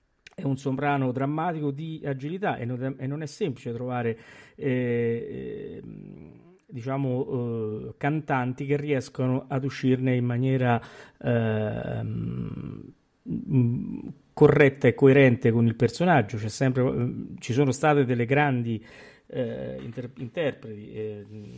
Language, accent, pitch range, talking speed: Italian, native, 115-140 Hz, 105 wpm